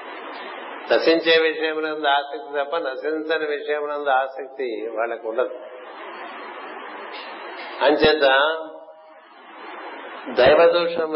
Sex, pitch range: male, 130-155 Hz